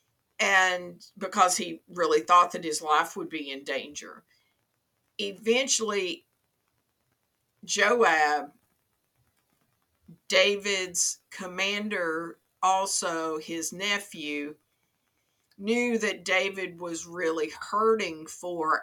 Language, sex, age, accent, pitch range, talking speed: English, female, 50-69, American, 160-205 Hz, 85 wpm